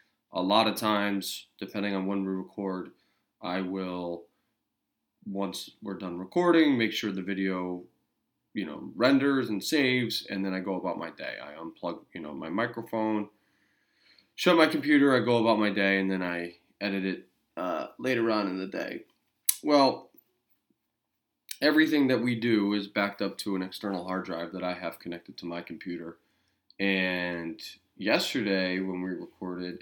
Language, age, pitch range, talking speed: English, 20-39, 90-105 Hz, 165 wpm